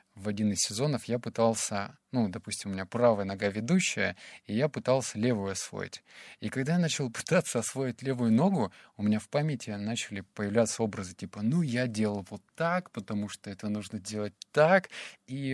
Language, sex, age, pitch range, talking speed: Russian, male, 20-39, 105-125 Hz, 180 wpm